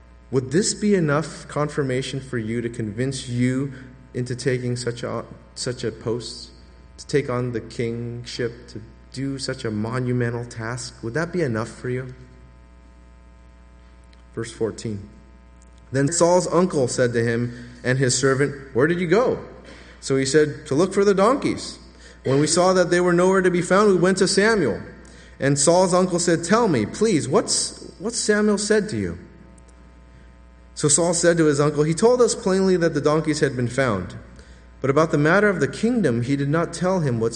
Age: 30-49